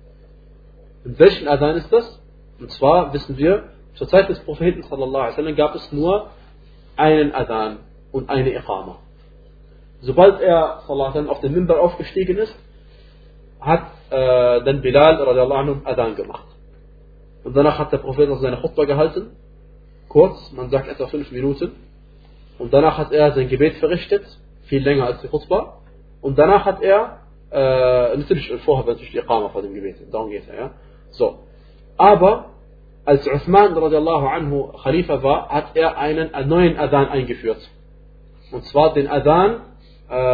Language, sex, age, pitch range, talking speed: German, male, 30-49, 135-170 Hz, 150 wpm